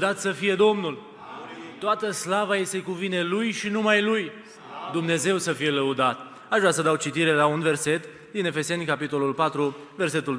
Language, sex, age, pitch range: Romanian, male, 20-39, 140-180 Hz